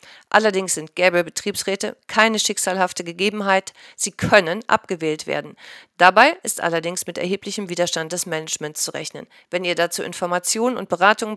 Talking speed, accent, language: 140 wpm, German, German